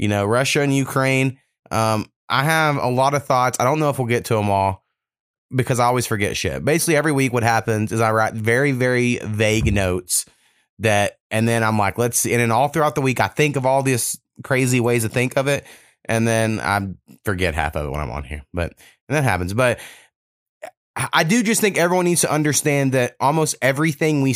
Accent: American